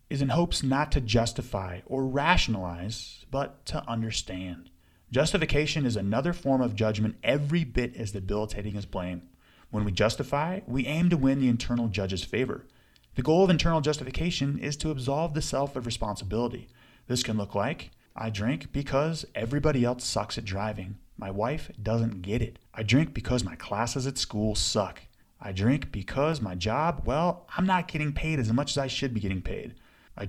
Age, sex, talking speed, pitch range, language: 30-49, male, 180 wpm, 100-135 Hz, English